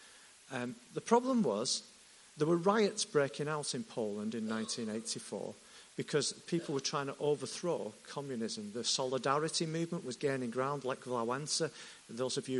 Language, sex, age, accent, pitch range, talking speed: English, male, 50-69, British, 130-205 Hz, 150 wpm